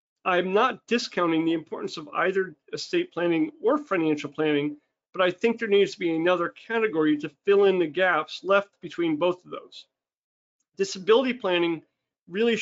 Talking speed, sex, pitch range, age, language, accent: 160 wpm, male, 165-195 Hz, 40-59, English, American